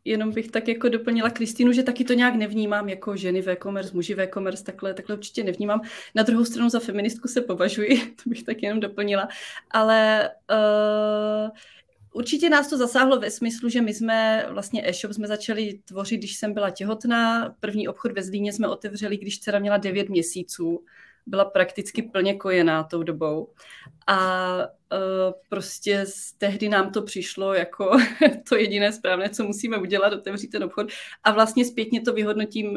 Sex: female